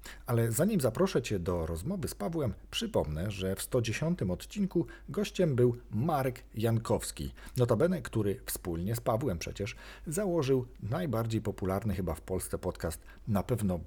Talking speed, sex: 140 wpm, male